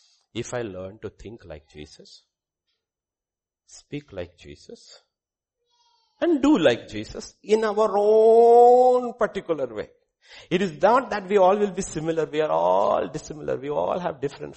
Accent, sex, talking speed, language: Indian, male, 150 wpm, English